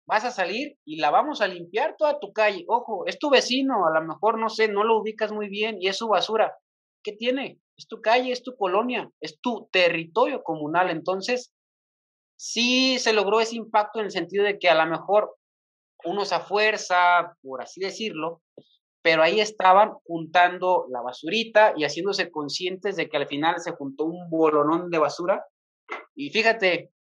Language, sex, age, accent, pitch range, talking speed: Spanish, male, 30-49, Mexican, 160-215 Hz, 180 wpm